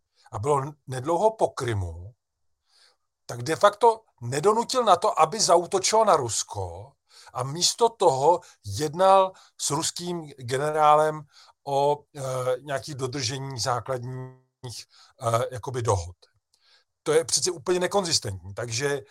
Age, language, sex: 50-69, Czech, male